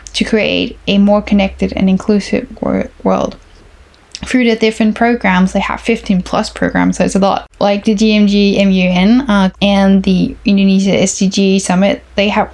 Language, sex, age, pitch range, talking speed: English, female, 10-29, 190-215 Hz, 165 wpm